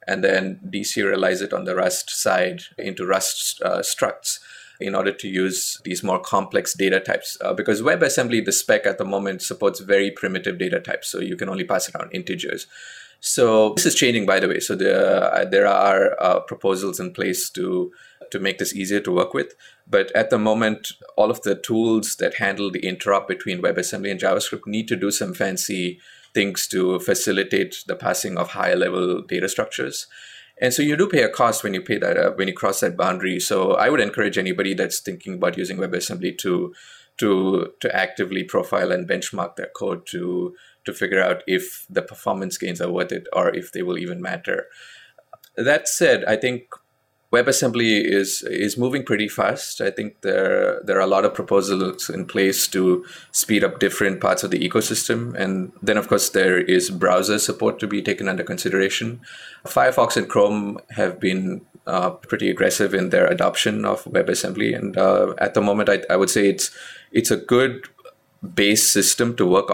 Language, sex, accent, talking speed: English, male, Indian, 190 wpm